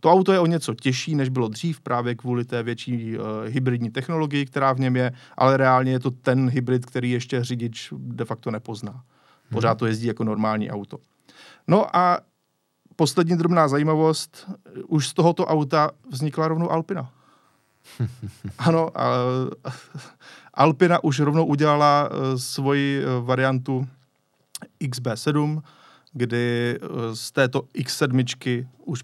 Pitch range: 125-155 Hz